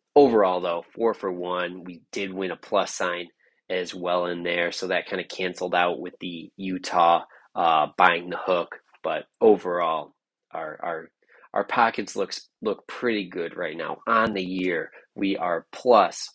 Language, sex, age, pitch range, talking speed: English, male, 20-39, 90-105 Hz, 170 wpm